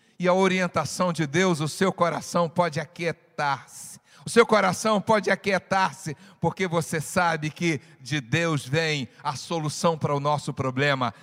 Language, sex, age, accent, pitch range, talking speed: Portuguese, male, 60-79, Brazilian, 145-235 Hz, 150 wpm